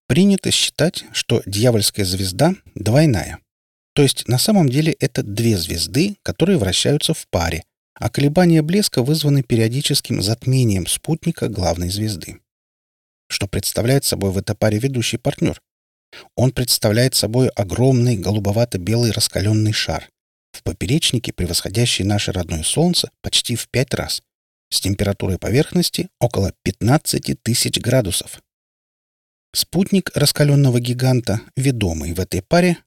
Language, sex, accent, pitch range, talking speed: Russian, male, native, 95-145 Hz, 120 wpm